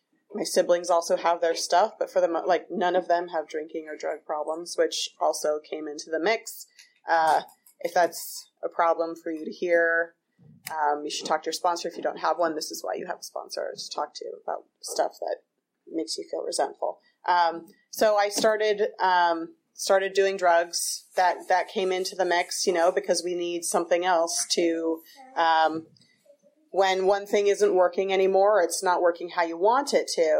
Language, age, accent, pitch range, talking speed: English, 30-49, American, 170-230 Hz, 195 wpm